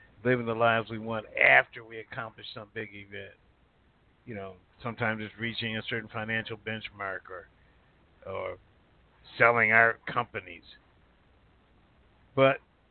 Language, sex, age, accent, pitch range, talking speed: English, male, 50-69, American, 100-120 Hz, 120 wpm